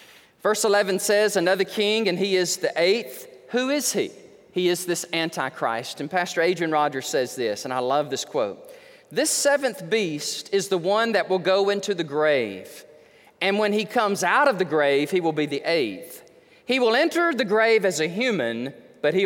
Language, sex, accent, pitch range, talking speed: English, male, American, 175-235 Hz, 195 wpm